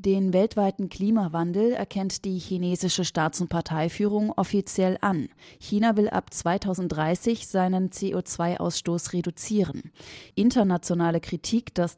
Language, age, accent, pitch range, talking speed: German, 30-49, German, 165-205 Hz, 105 wpm